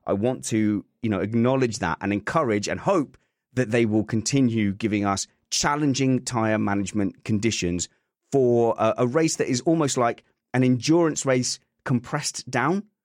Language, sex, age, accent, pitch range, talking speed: English, male, 30-49, British, 100-140 Hz, 155 wpm